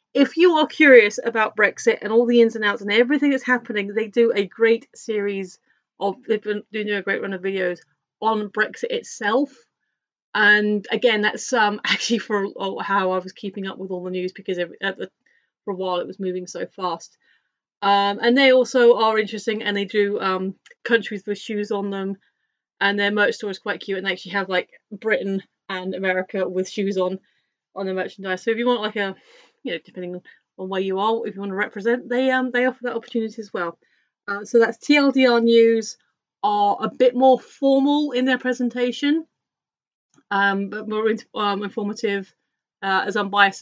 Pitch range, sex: 195-240 Hz, female